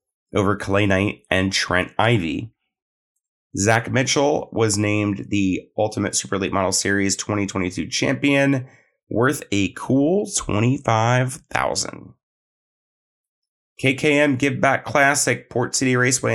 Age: 30-49